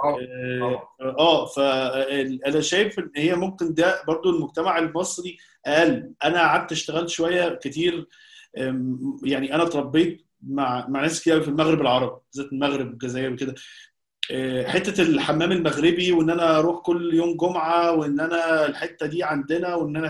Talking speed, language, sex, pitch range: 145 wpm, Arabic, male, 140-180 Hz